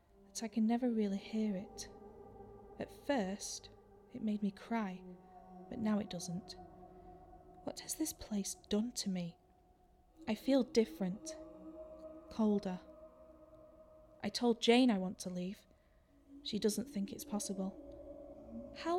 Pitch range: 195-250 Hz